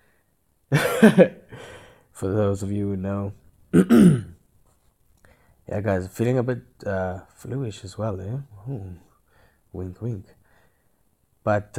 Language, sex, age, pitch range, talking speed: English, male, 20-39, 95-120 Hz, 100 wpm